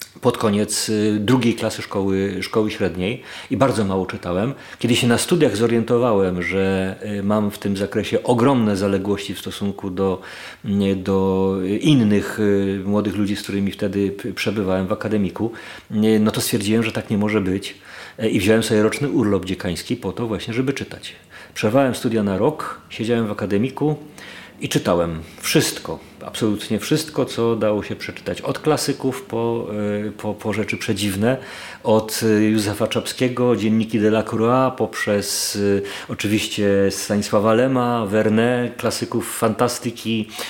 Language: Polish